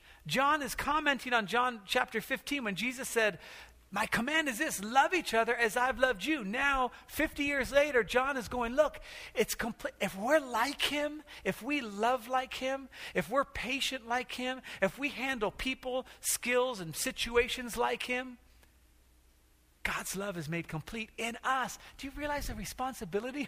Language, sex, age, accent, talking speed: English, male, 40-59, American, 170 wpm